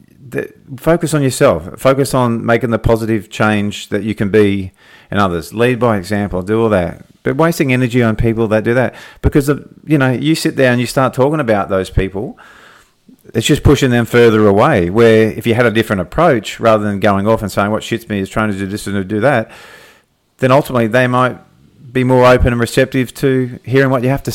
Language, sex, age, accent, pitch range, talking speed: English, male, 40-59, Australian, 100-125 Hz, 215 wpm